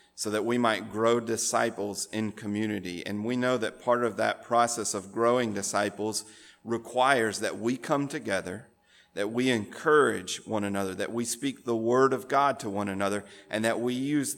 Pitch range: 100-125 Hz